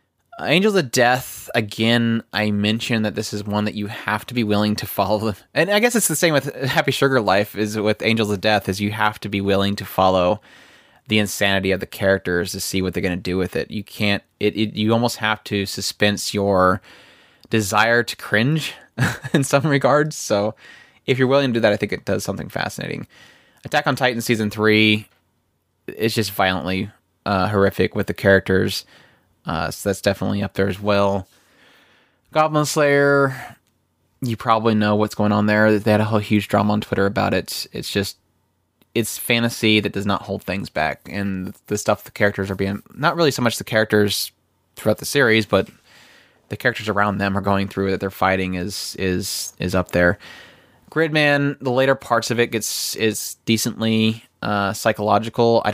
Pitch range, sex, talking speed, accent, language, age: 100-115 Hz, male, 190 wpm, American, English, 20-39